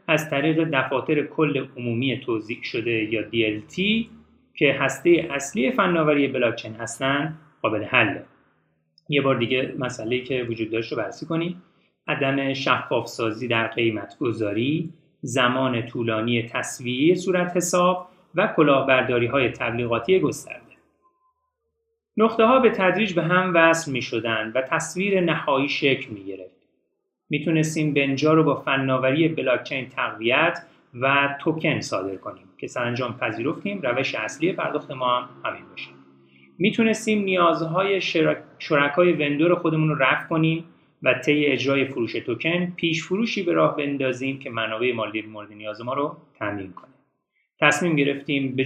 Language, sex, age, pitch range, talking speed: Persian, male, 30-49, 120-165 Hz, 140 wpm